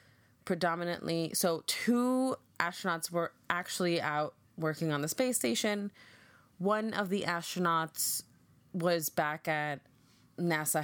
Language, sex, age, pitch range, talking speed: English, female, 20-39, 160-200 Hz, 110 wpm